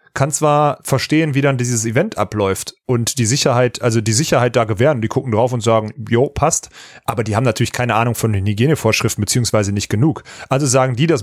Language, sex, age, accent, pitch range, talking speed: German, male, 30-49, German, 120-145 Hz, 210 wpm